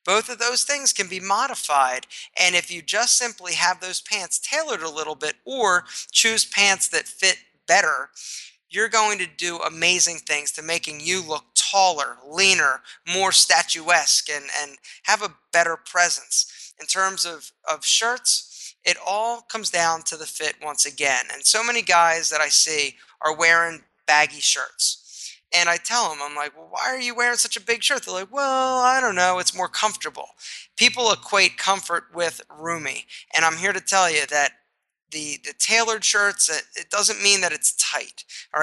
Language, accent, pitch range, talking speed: English, American, 160-210 Hz, 185 wpm